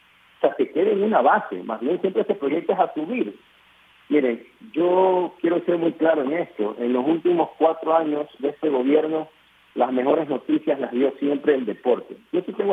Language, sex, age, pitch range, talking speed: Spanish, male, 50-69, 125-165 Hz, 195 wpm